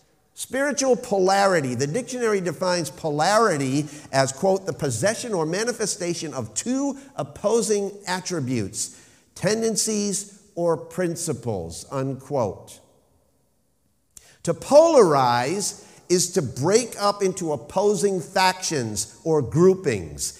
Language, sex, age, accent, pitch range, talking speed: English, male, 50-69, American, 135-195 Hz, 90 wpm